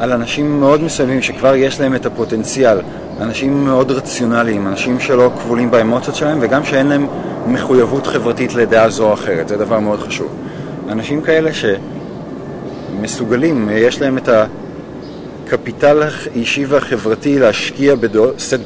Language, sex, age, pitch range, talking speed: Hebrew, male, 30-49, 115-140 Hz, 130 wpm